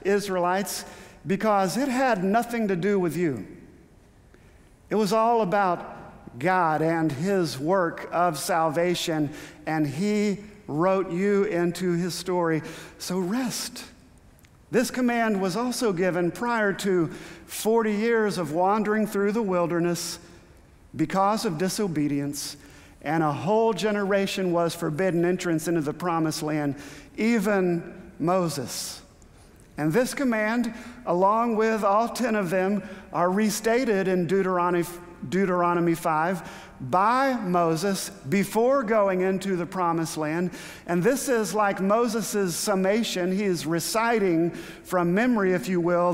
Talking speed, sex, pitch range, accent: 125 wpm, male, 170-210 Hz, American